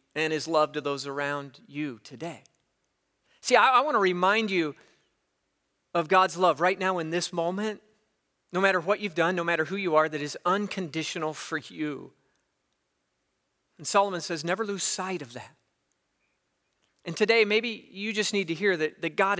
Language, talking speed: English, 175 wpm